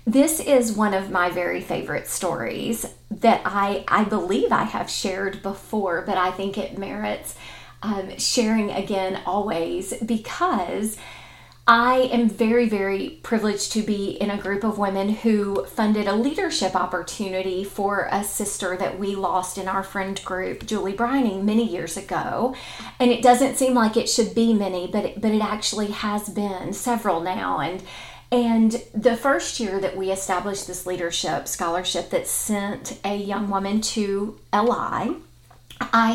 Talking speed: 155 wpm